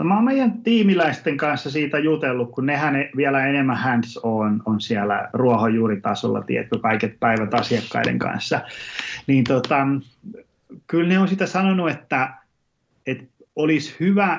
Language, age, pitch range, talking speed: Finnish, 30-49, 120-155 Hz, 135 wpm